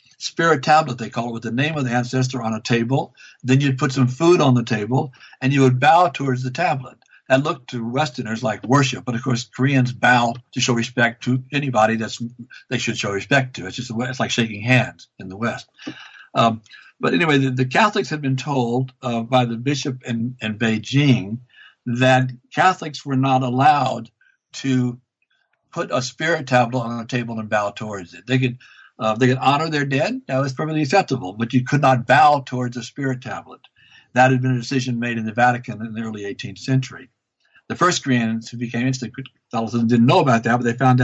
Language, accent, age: English, American, 60-79